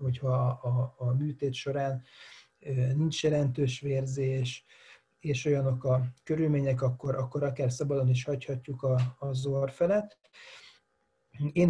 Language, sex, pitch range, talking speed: Hungarian, male, 130-150 Hz, 115 wpm